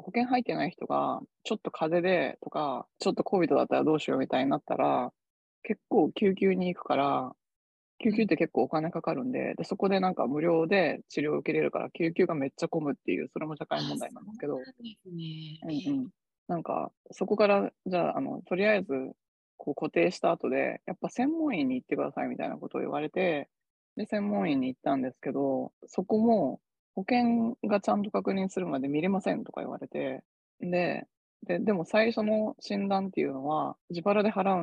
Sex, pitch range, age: female, 150-215 Hz, 20-39